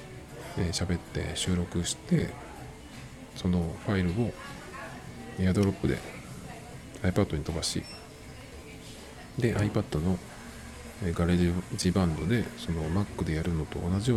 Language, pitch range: Japanese, 85-110 Hz